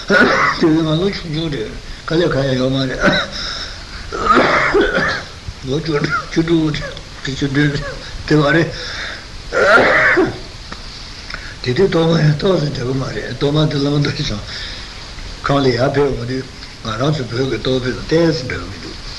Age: 60-79